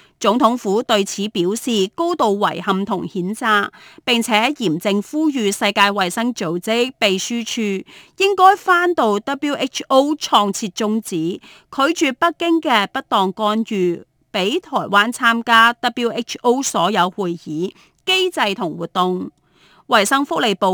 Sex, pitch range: female, 195-270 Hz